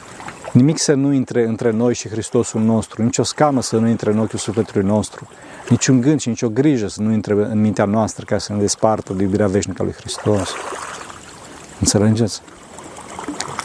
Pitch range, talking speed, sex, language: 110-135 Hz, 190 wpm, male, Romanian